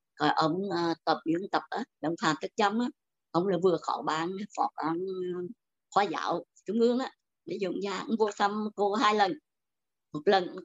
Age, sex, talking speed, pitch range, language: 60-79, male, 190 wpm, 160-230 Hz, Vietnamese